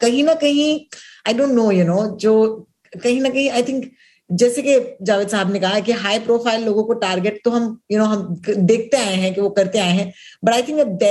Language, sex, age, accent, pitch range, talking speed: Hindi, female, 20-39, native, 190-245 Hz, 110 wpm